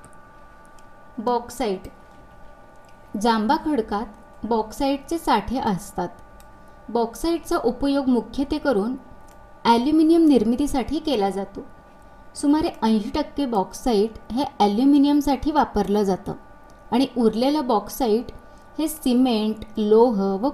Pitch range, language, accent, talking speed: 215-275 Hz, Marathi, native, 90 wpm